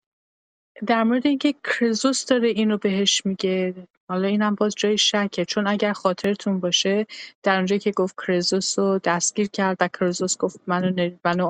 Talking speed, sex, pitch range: 150 wpm, female, 185-220 Hz